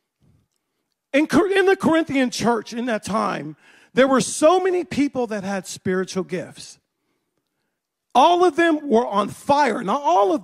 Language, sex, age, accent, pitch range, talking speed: English, male, 40-59, American, 235-340 Hz, 145 wpm